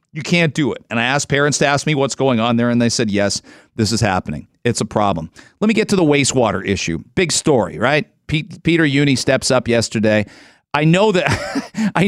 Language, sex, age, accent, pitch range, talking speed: English, male, 40-59, American, 130-195 Hz, 225 wpm